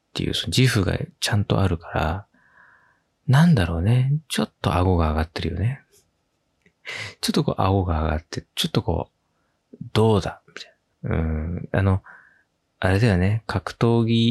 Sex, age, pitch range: male, 20-39, 85-125 Hz